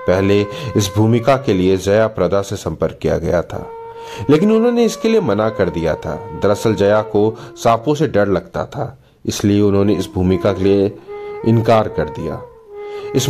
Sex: male